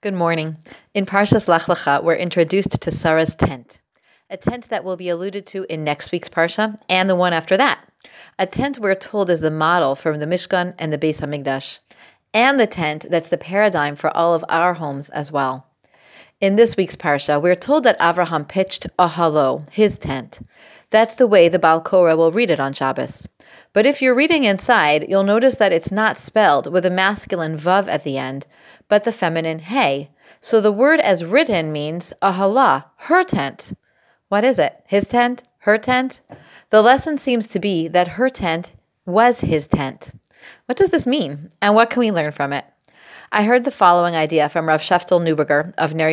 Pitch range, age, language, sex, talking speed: 155-215 Hz, 30-49, English, female, 190 wpm